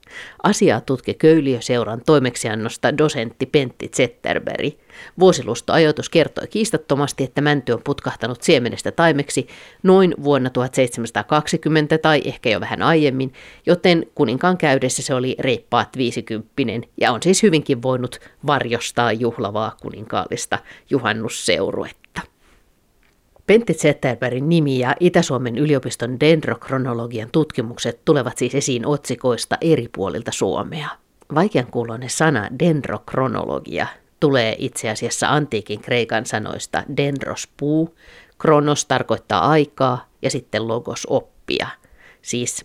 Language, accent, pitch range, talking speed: Finnish, native, 120-155 Hz, 105 wpm